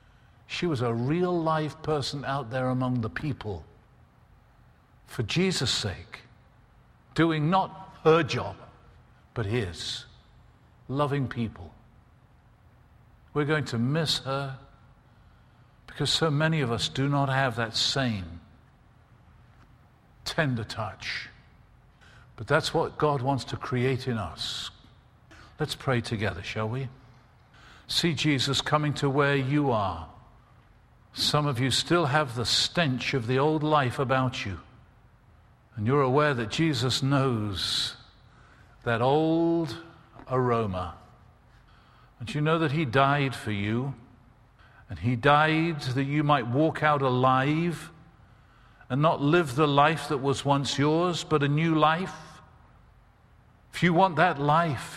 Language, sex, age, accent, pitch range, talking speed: English, male, 50-69, British, 115-150 Hz, 125 wpm